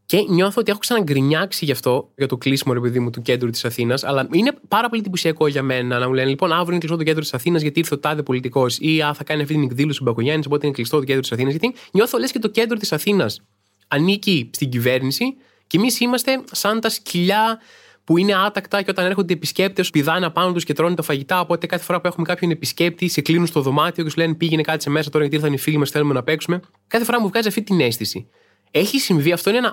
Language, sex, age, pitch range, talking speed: Greek, male, 20-39, 145-200 Hz, 220 wpm